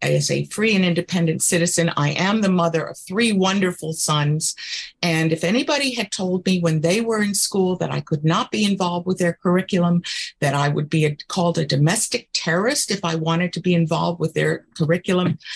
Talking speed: 195 wpm